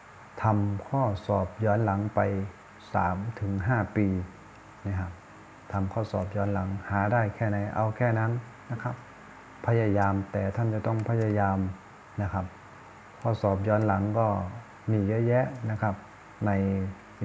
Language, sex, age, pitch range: Thai, male, 30-49, 95-110 Hz